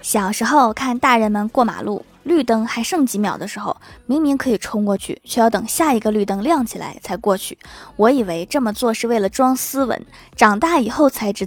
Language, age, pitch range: Chinese, 20-39, 210-280 Hz